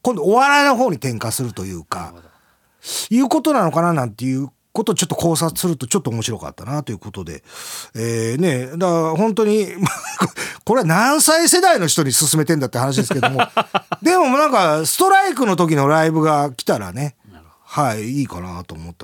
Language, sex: Japanese, male